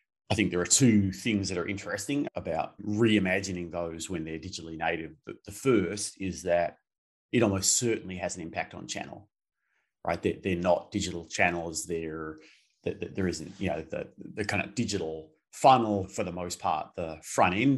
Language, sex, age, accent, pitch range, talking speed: English, male, 30-49, Australian, 85-105 Hz, 175 wpm